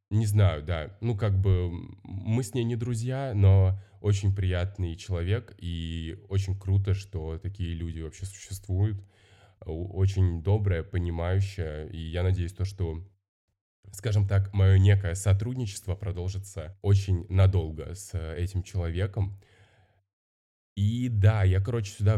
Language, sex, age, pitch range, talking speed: Russian, male, 20-39, 90-100 Hz, 125 wpm